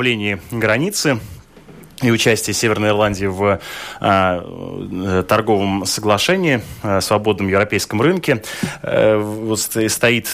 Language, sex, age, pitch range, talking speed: Russian, male, 20-39, 95-115 Hz, 95 wpm